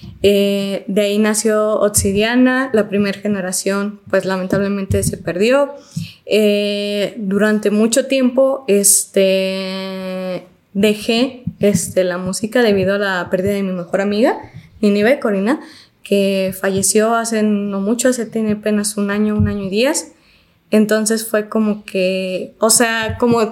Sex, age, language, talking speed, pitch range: female, 20-39, Spanish, 125 wpm, 200-240 Hz